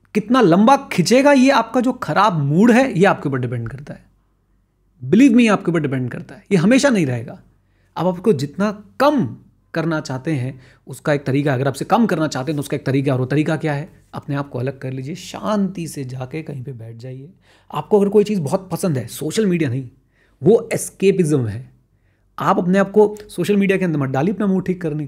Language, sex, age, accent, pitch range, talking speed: Hindi, male, 30-49, native, 130-205 Hz, 220 wpm